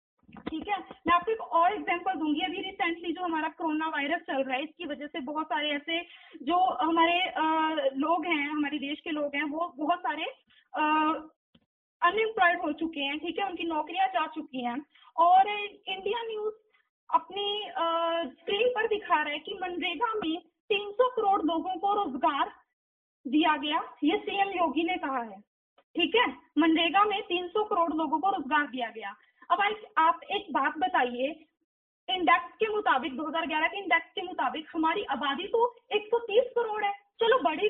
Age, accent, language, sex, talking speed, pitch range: 20-39, native, Hindi, female, 170 wpm, 310-405 Hz